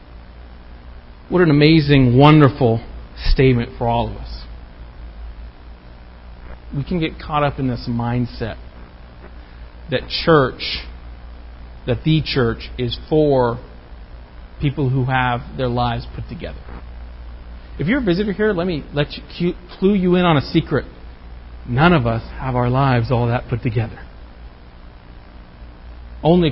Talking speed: 130 wpm